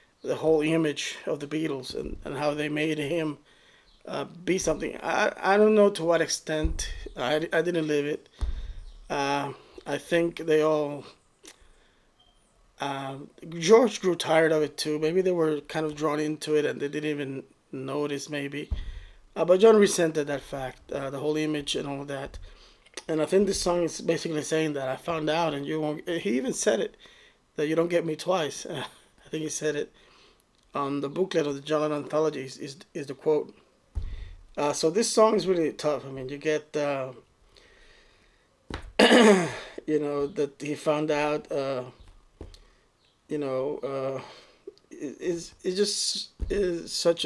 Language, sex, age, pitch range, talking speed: English, male, 20-39, 140-165 Hz, 175 wpm